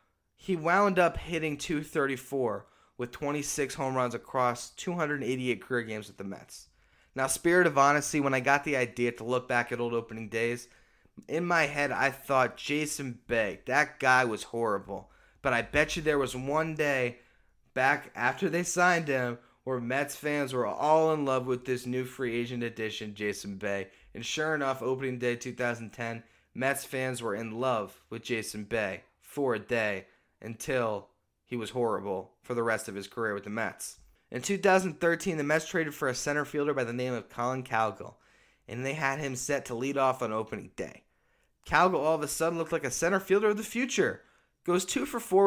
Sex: male